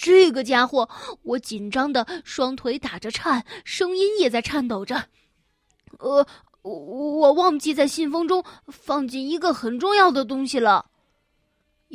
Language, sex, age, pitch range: Chinese, female, 20-39, 230-300 Hz